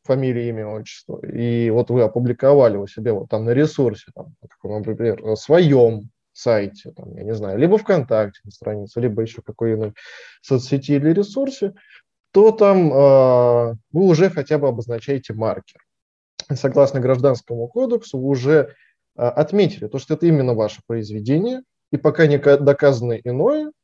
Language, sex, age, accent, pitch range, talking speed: Russian, male, 20-39, native, 120-155 Hz, 155 wpm